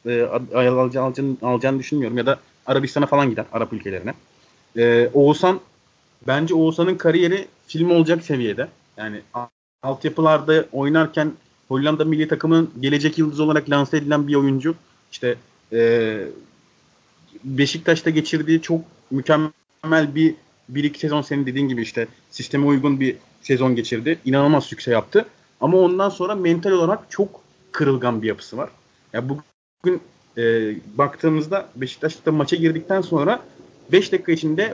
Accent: native